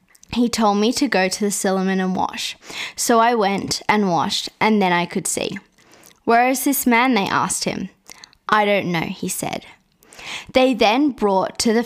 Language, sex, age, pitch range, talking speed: English, female, 20-39, 195-235 Hz, 185 wpm